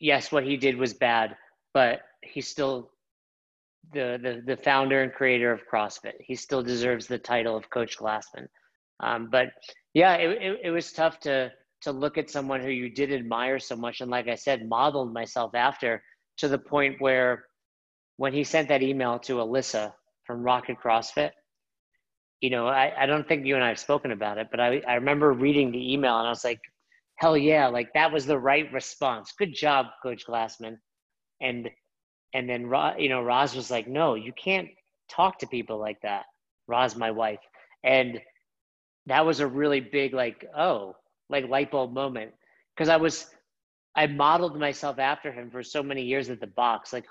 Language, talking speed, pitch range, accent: English, 190 wpm, 120-145 Hz, American